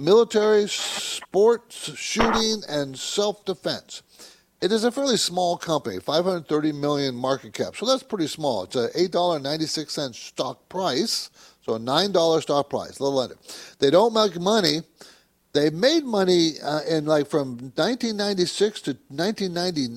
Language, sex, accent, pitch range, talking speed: English, male, American, 140-200 Hz, 160 wpm